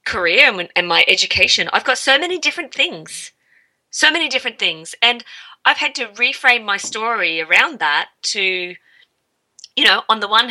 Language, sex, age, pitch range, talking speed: English, female, 30-49, 165-240 Hz, 165 wpm